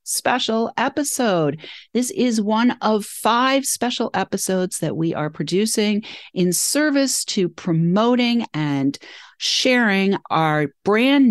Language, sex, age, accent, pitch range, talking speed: English, female, 40-59, American, 160-235 Hz, 110 wpm